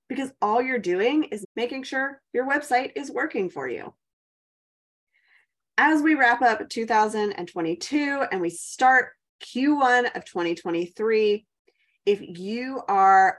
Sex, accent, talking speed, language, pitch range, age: female, American, 120 wpm, English, 185-250 Hz, 20-39